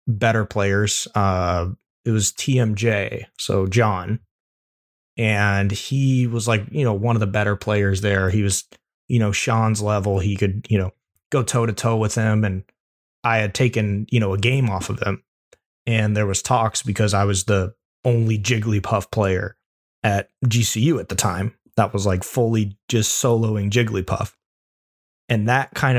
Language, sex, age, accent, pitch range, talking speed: English, male, 20-39, American, 100-120 Hz, 170 wpm